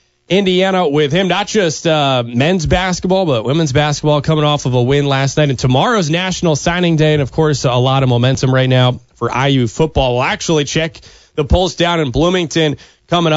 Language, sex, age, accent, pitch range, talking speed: English, male, 30-49, American, 135-165 Hz, 200 wpm